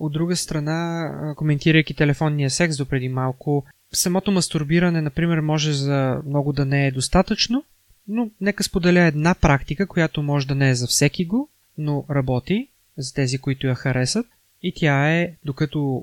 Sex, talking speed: male, 160 wpm